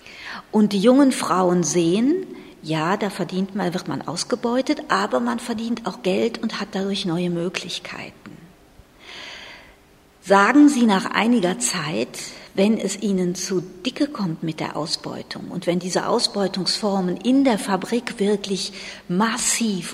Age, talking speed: 50-69, 135 wpm